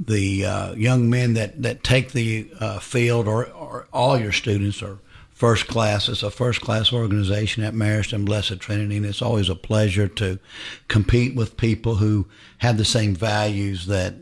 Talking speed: 180 wpm